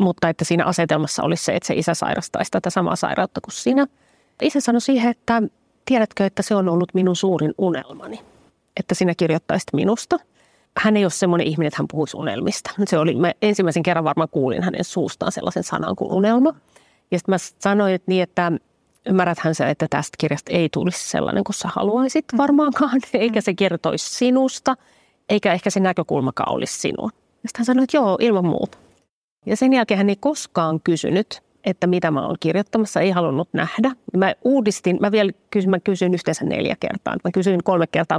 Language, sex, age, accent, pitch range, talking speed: Finnish, female, 30-49, native, 170-225 Hz, 180 wpm